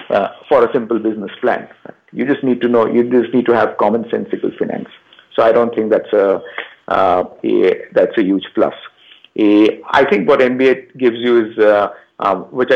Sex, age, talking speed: male, 50-69, 185 wpm